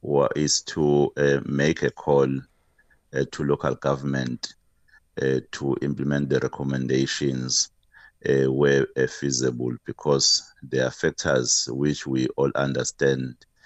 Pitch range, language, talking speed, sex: 65-70 Hz, English, 120 wpm, male